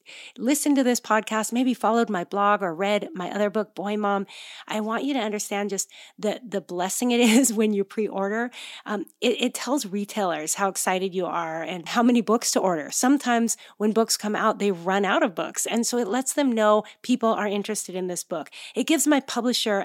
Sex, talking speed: female, 215 wpm